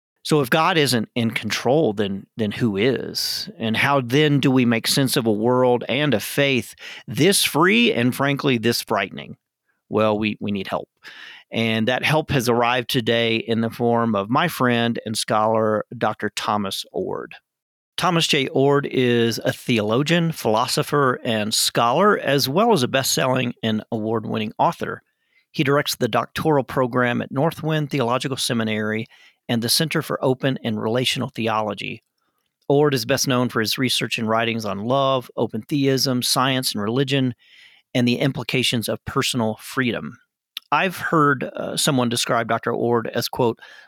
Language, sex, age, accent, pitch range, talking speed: English, male, 40-59, American, 115-140 Hz, 160 wpm